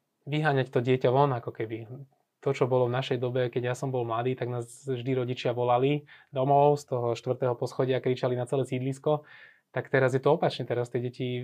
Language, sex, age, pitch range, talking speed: Slovak, male, 20-39, 120-135 Hz, 210 wpm